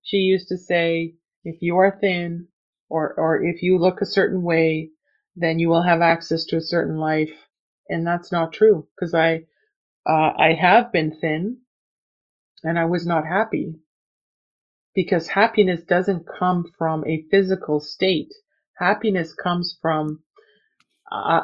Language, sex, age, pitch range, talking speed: English, female, 30-49, 165-205 Hz, 150 wpm